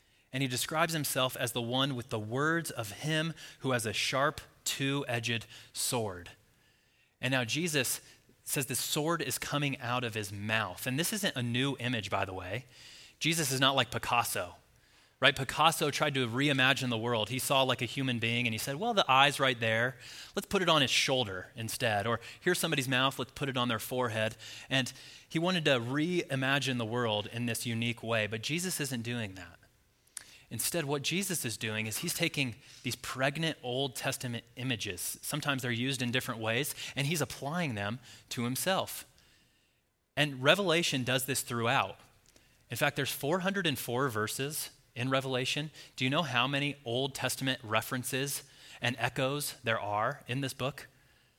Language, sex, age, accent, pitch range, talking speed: English, male, 30-49, American, 115-140 Hz, 175 wpm